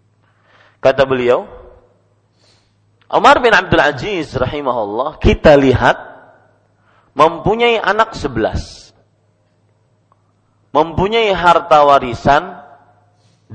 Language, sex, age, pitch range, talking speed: Malay, male, 40-59, 105-145 Hz, 70 wpm